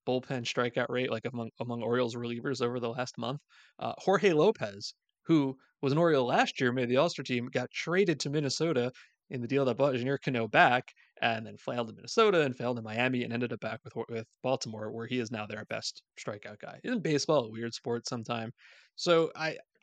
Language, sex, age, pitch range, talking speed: English, male, 20-39, 120-140 Hz, 210 wpm